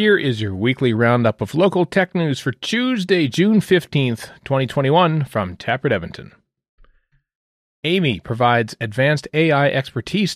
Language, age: English, 40-59